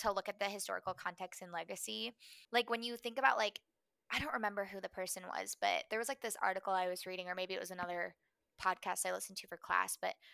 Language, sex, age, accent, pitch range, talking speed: English, female, 20-39, American, 185-230 Hz, 245 wpm